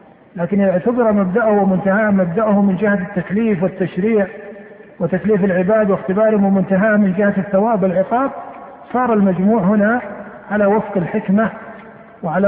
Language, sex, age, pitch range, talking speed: Arabic, male, 50-69, 185-220 Hz, 115 wpm